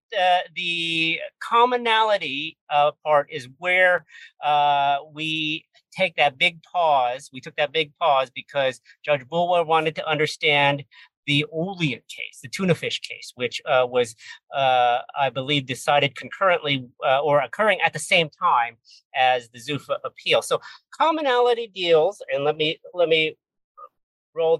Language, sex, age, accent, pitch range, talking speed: English, male, 50-69, American, 140-185 Hz, 145 wpm